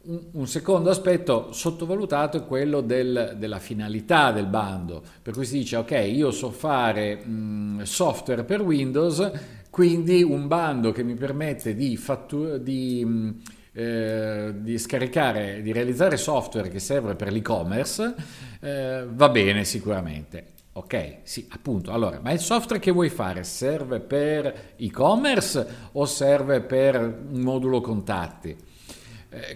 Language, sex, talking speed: Italian, male, 120 wpm